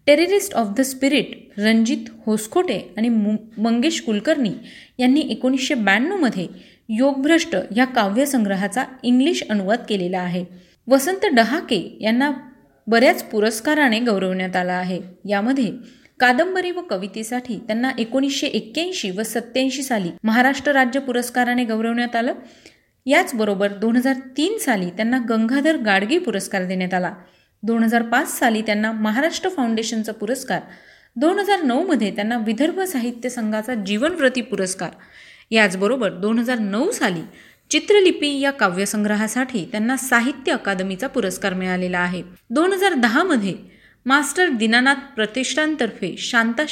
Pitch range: 210-275 Hz